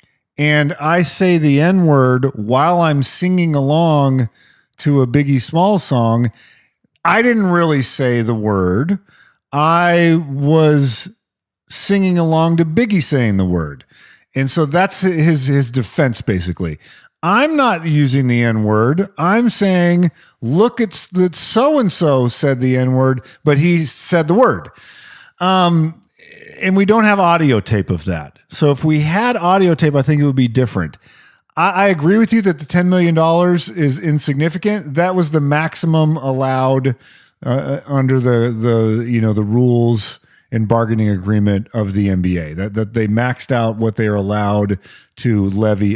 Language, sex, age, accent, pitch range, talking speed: English, male, 50-69, American, 120-175 Hz, 160 wpm